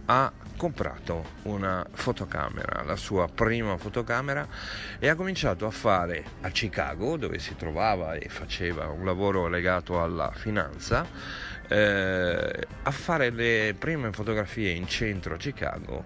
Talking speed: 125 wpm